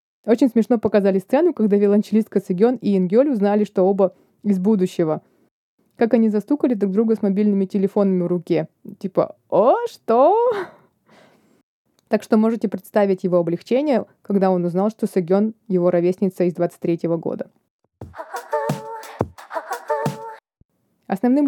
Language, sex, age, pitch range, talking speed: Russian, female, 20-39, 185-225 Hz, 125 wpm